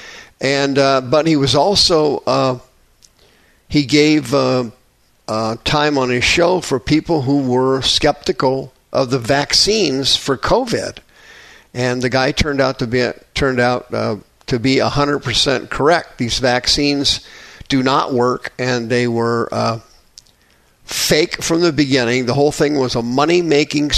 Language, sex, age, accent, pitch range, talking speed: English, male, 50-69, American, 125-150 Hz, 150 wpm